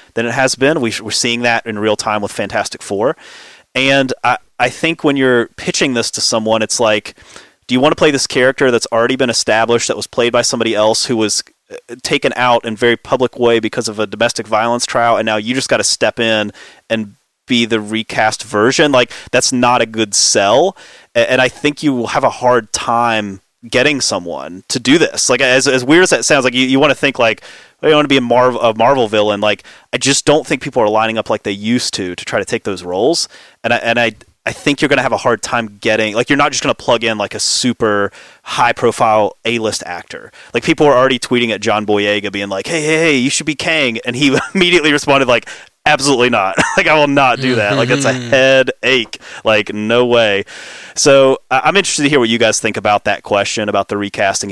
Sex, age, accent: male, 30-49, American